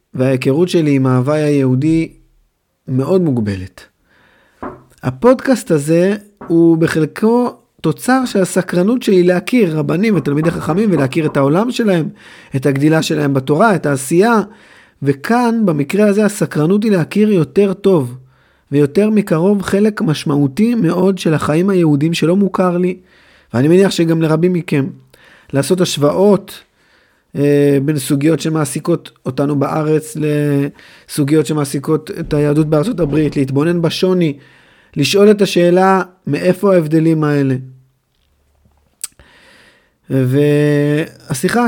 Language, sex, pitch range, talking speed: Hebrew, male, 145-185 Hz, 110 wpm